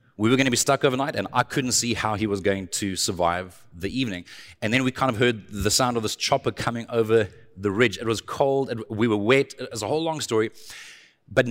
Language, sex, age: English, male, 30-49